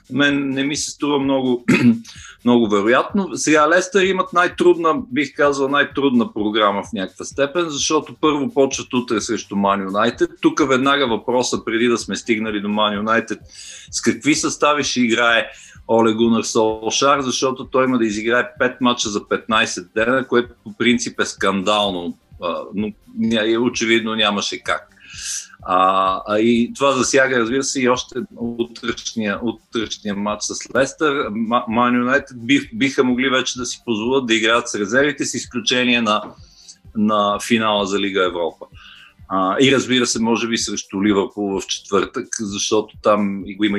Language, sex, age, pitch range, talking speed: Bulgarian, male, 50-69, 105-135 Hz, 150 wpm